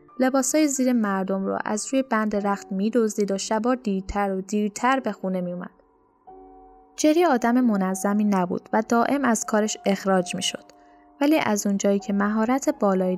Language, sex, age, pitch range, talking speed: Persian, female, 10-29, 195-255 Hz, 155 wpm